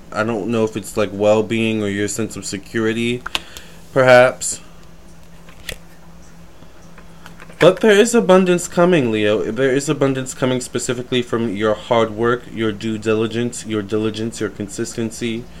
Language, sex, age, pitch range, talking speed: English, male, 20-39, 105-130 Hz, 135 wpm